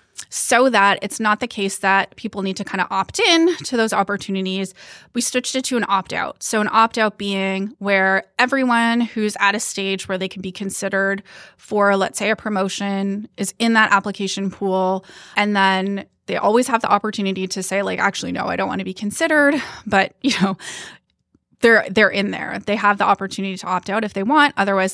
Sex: female